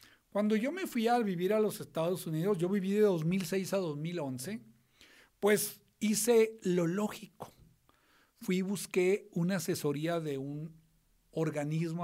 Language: Spanish